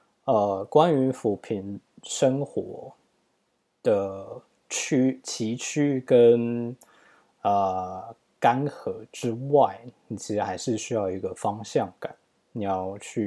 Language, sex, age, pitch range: Chinese, male, 20-39, 105-140 Hz